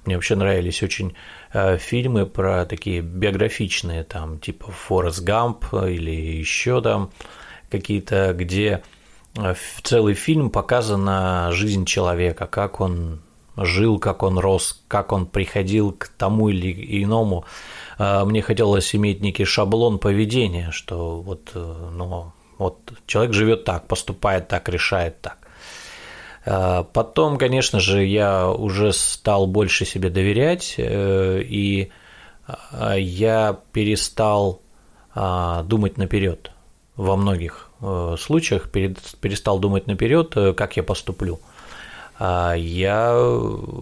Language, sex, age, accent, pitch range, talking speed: Russian, male, 30-49, native, 90-105 Hz, 105 wpm